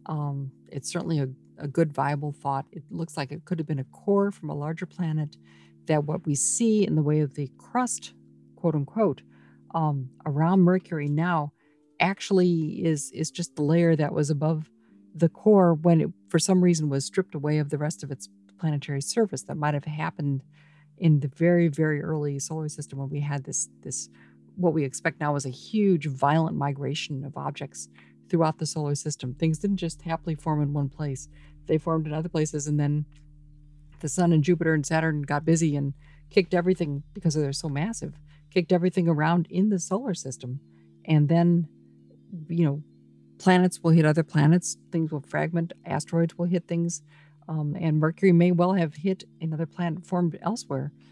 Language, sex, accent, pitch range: English, female, American, 145-170 Hz